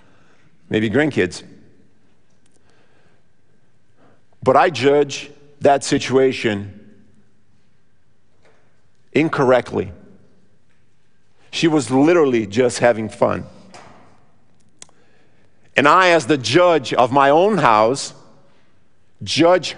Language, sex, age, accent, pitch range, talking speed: English, male, 50-69, American, 120-155 Hz, 75 wpm